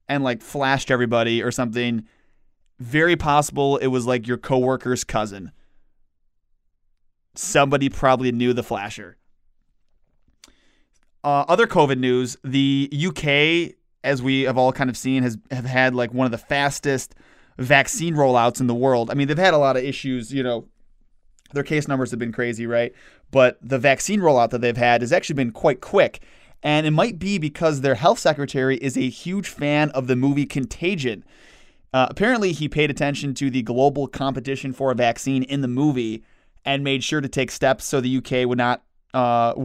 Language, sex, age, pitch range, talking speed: English, male, 20-39, 125-145 Hz, 175 wpm